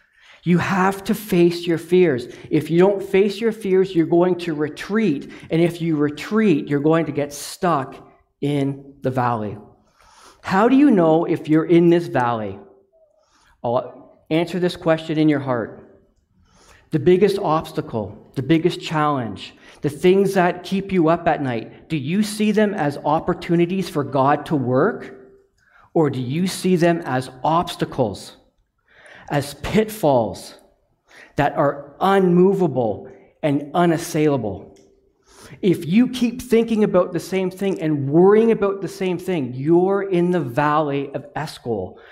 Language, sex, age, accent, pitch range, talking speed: English, male, 40-59, American, 145-185 Hz, 145 wpm